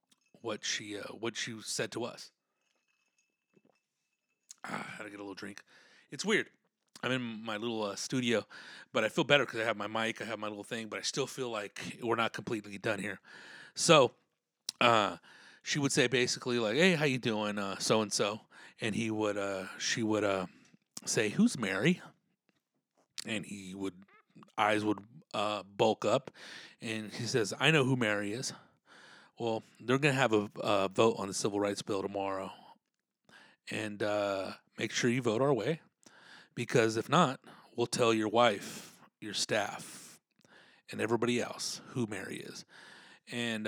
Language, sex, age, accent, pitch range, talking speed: English, male, 30-49, American, 105-125 Hz, 175 wpm